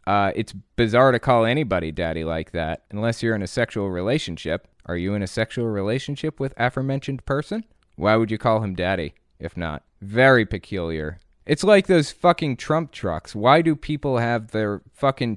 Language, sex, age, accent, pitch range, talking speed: English, male, 20-39, American, 95-120 Hz, 180 wpm